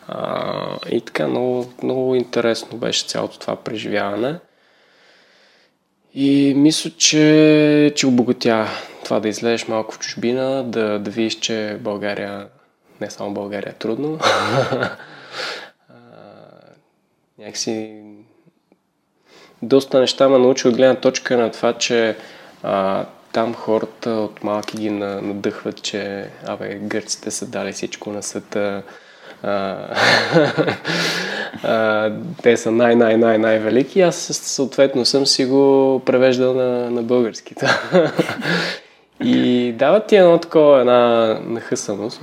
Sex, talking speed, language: male, 105 wpm, Bulgarian